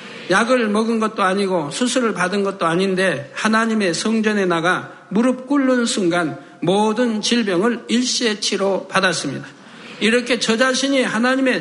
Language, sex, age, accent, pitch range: Korean, male, 60-79, native, 205-250 Hz